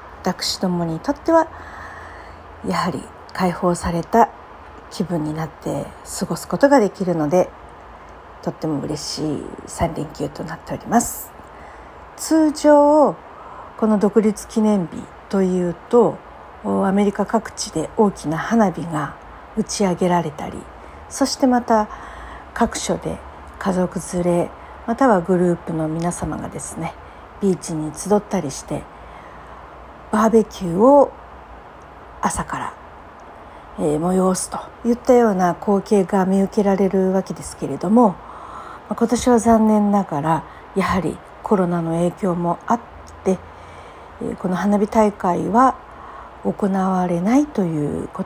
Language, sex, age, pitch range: Japanese, female, 50-69, 175-220 Hz